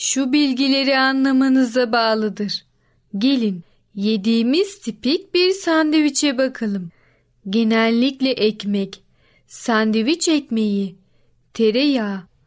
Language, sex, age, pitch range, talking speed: Turkish, female, 30-49, 215-280 Hz, 70 wpm